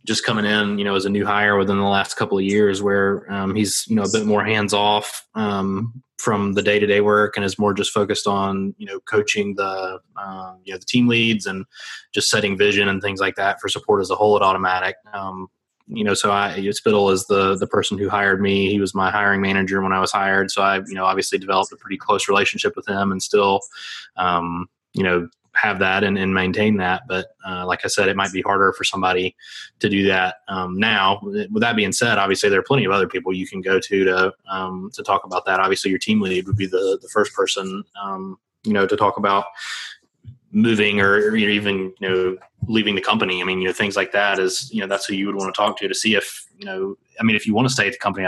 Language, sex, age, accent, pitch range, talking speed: English, male, 20-39, American, 95-105 Hz, 250 wpm